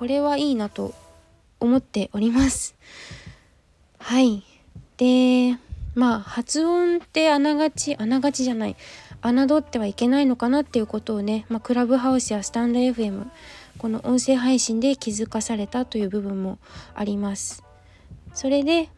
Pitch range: 205-270 Hz